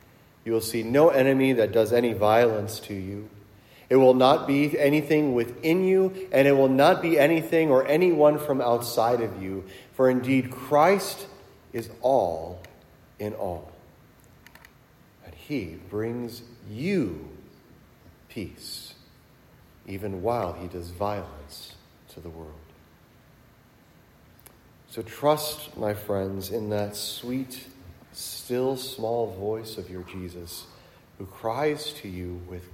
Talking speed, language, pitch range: 125 wpm, English, 90-130 Hz